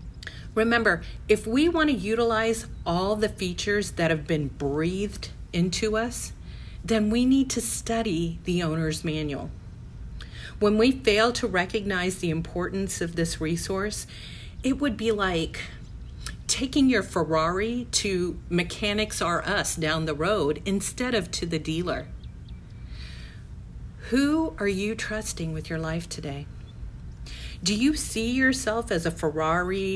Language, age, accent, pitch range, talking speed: English, 40-59, American, 160-220 Hz, 135 wpm